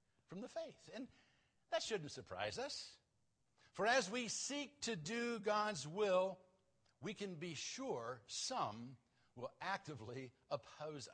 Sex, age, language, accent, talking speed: male, 60-79, English, American, 130 wpm